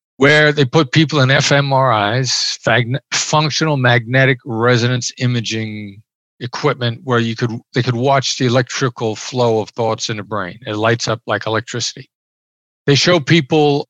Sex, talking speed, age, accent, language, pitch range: male, 140 wpm, 50-69, American, English, 115-145 Hz